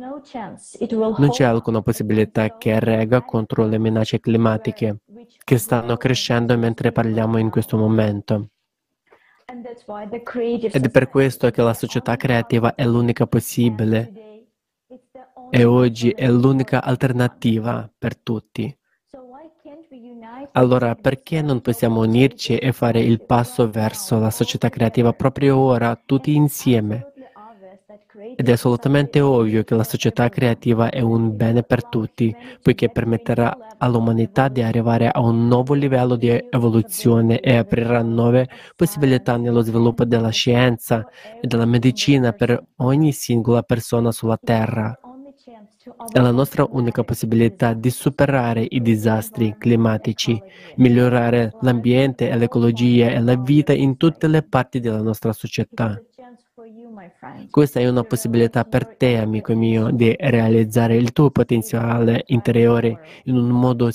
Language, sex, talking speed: Italian, male, 125 wpm